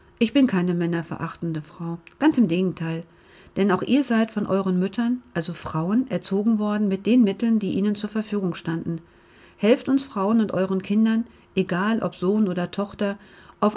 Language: German